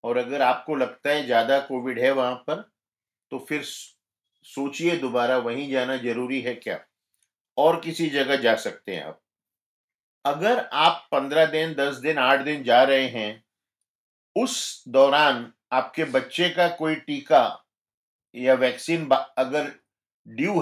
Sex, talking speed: male, 140 wpm